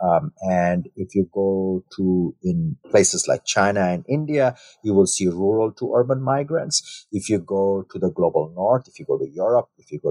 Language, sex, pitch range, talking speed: English, male, 95-125 Hz, 200 wpm